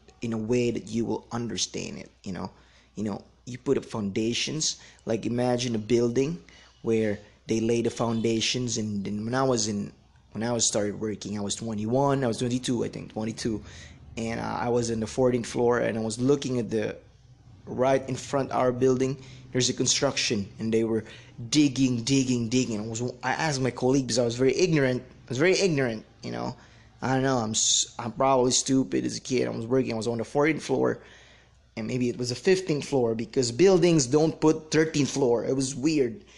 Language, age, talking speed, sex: English, 20-39, 210 wpm, male